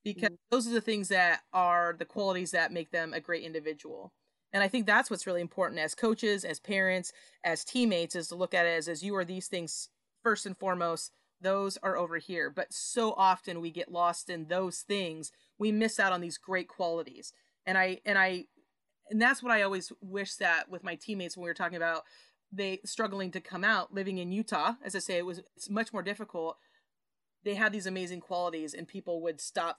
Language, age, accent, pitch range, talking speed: English, 30-49, American, 170-210 Hz, 215 wpm